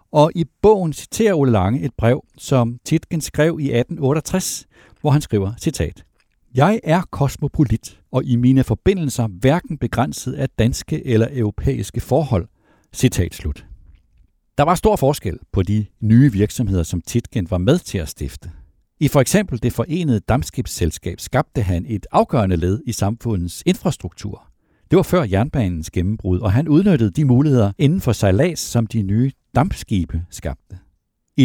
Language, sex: Danish, male